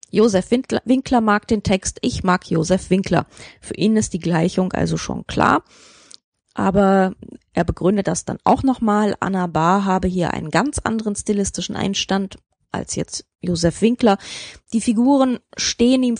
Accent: German